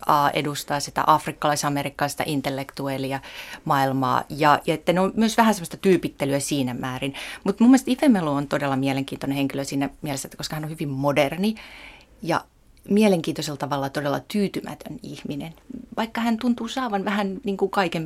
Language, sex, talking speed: Finnish, female, 150 wpm